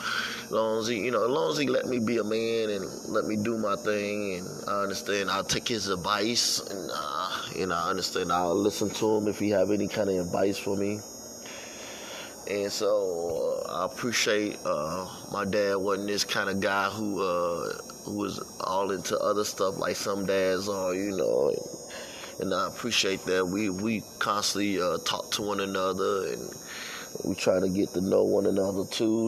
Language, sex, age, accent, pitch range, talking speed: English, male, 20-39, American, 95-110 Hz, 195 wpm